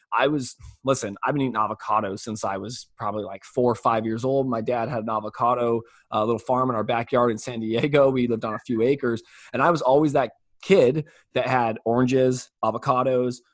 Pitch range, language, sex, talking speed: 125-190 Hz, English, male, 210 wpm